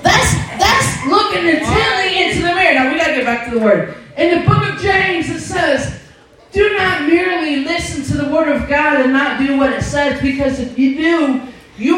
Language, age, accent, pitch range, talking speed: English, 40-59, American, 165-270 Hz, 200 wpm